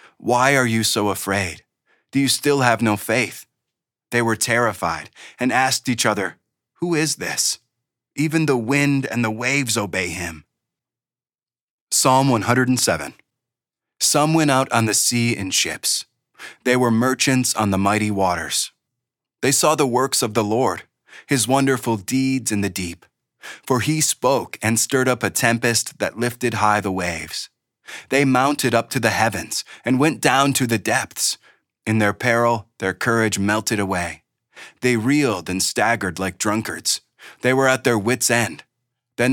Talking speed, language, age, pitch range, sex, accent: 160 wpm, English, 30-49, 100-130 Hz, male, American